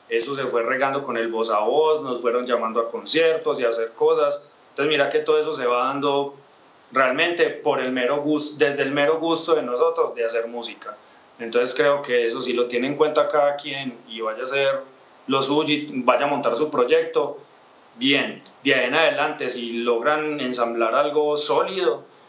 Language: Spanish